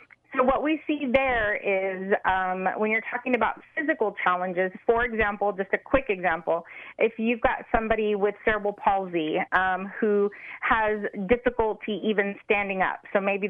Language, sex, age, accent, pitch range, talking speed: English, female, 30-49, American, 195-240 Hz, 155 wpm